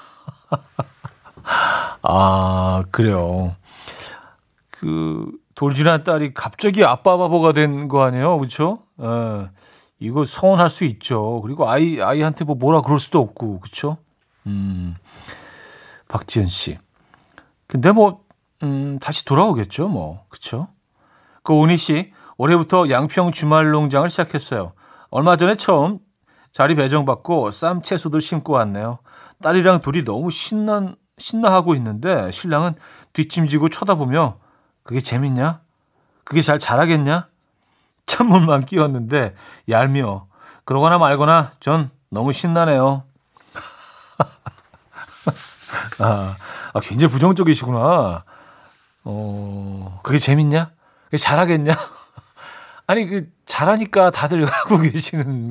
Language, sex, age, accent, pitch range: Korean, male, 40-59, native, 120-170 Hz